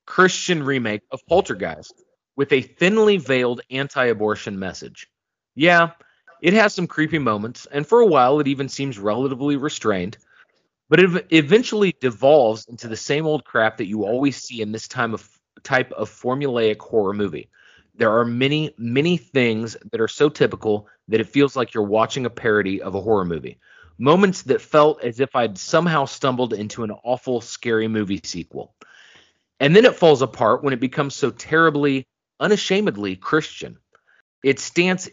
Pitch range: 110-155 Hz